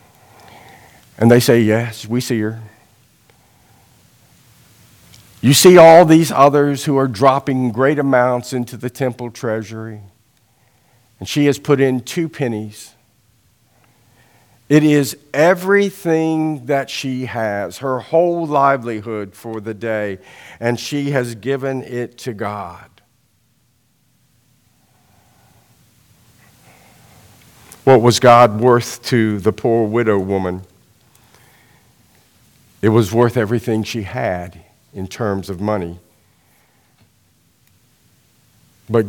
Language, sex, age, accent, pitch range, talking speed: English, male, 50-69, American, 110-135 Hz, 105 wpm